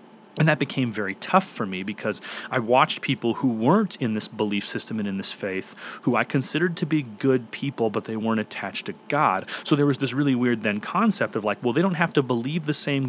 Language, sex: English, male